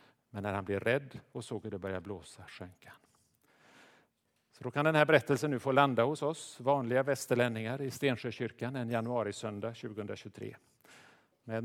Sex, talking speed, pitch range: male, 165 wpm, 110-130 Hz